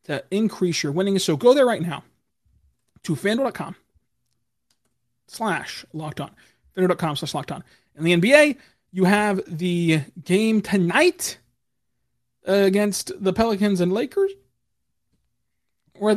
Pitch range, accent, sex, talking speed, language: 150-220 Hz, American, male, 115 wpm, English